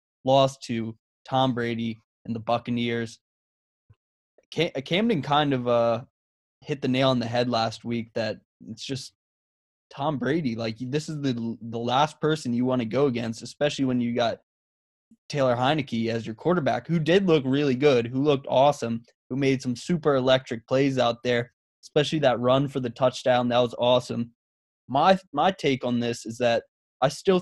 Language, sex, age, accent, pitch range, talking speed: English, male, 20-39, American, 115-140 Hz, 175 wpm